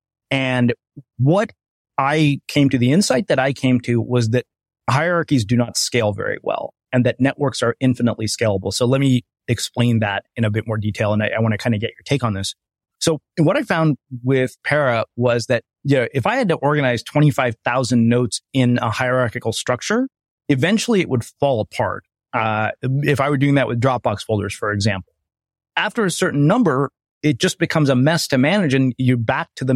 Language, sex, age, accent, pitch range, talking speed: English, male, 30-49, American, 120-145 Hz, 200 wpm